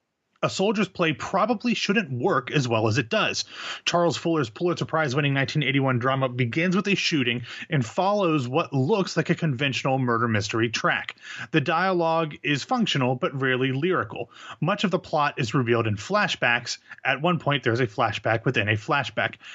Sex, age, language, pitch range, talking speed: male, 30-49, English, 125-165 Hz, 170 wpm